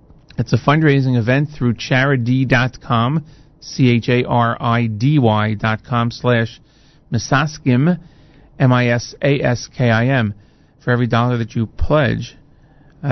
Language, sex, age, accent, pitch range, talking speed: English, male, 40-59, American, 120-145 Hz, 155 wpm